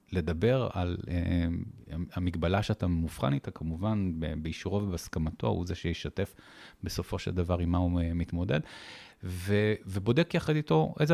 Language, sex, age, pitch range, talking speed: Hebrew, male, 30-49, 90-115 Hz, 135 wpm